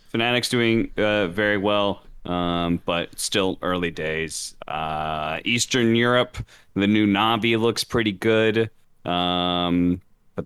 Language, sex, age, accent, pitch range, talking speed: English, male, 30-49, American, 90-115 Hz, 120 wpm